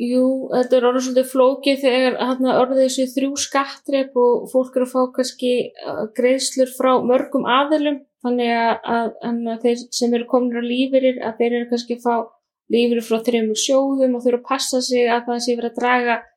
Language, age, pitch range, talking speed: English, 20-39, 230-255 Hz, 185 wpm